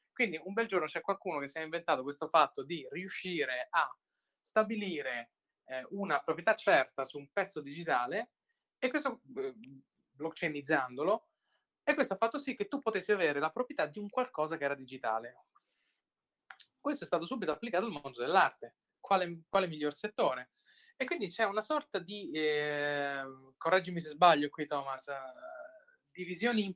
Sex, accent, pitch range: male, native, 150-215 Hz